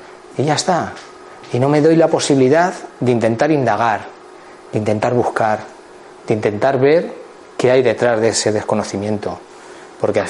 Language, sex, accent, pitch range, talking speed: Spanish, male, Spanish, 110-160 Hz, 150 wpm